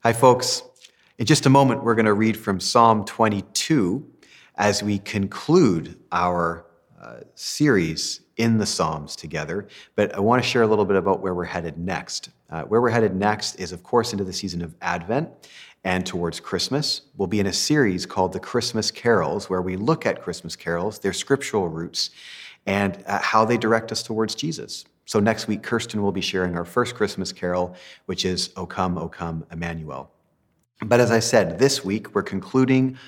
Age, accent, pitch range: 40-59, American, 90-115 Hz